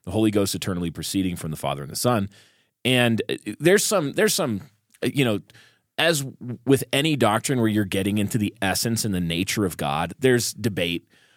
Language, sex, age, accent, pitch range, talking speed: English, male, 30-49, American, 100-125 Hz, 185 wpm